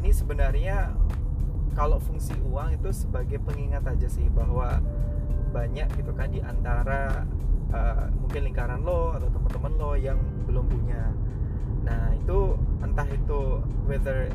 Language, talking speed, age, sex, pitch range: Indonesian, 125 wpm, 20-39, male, 65-75 Hz